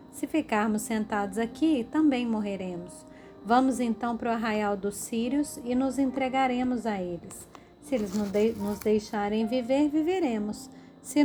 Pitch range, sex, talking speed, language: 205-255 Hz, female, 135 wpm, Portuguese